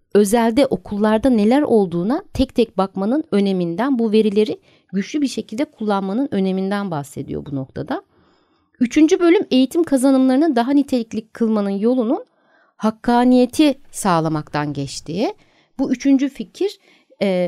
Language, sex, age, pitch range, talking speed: Turkish, female, 60-79, 190-255 Hz, 115 wpm